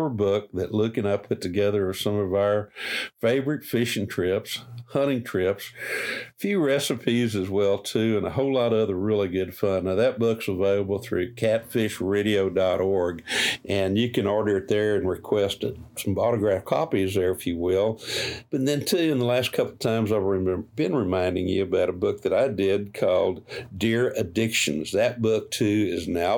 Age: 60-79